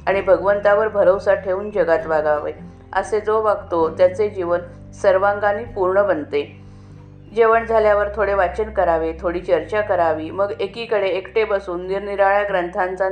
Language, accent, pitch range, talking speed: Marathi, native, 175-210 Hz, 130 wpm